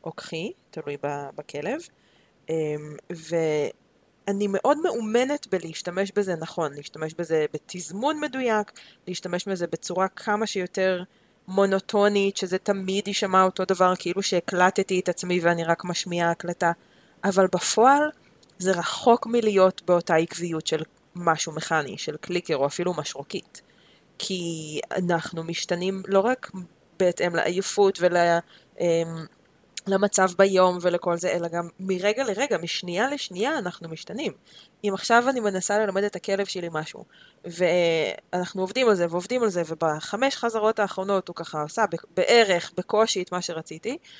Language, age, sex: Hebrew, 20-39, female